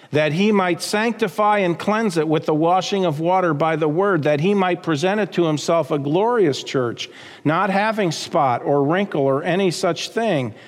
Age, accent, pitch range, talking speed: 50-69, American, 150-205 Hz, 190 wpm